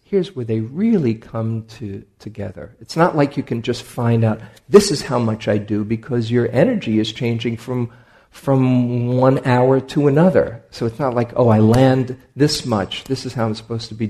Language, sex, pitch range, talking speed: English, male, 110-135 Hz, 205 wpm